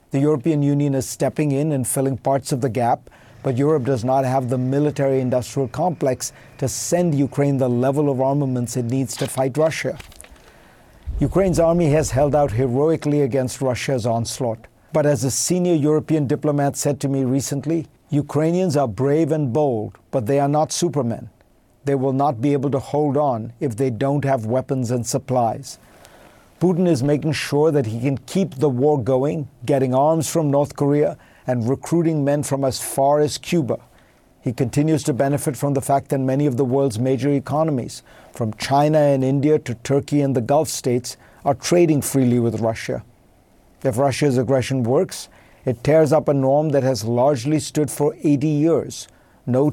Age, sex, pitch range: 50-69, male, 130-150 Hz